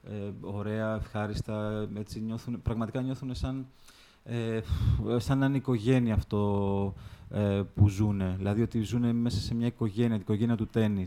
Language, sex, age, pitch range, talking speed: Greek, male, 20-39, 105-115 Hz, 145 wpm